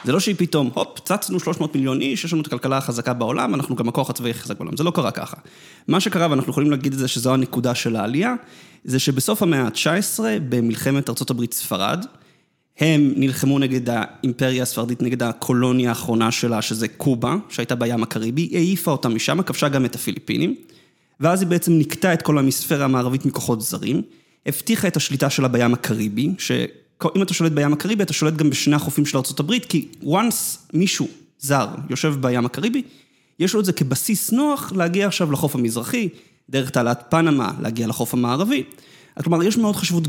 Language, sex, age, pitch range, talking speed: Hebrew, male, 20-39, 125-175 Hz, 170 wpm